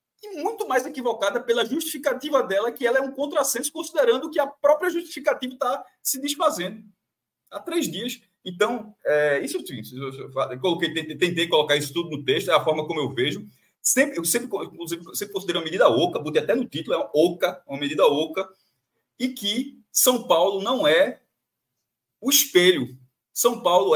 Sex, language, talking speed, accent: male, Portuguese, 165 wpm, Brazilian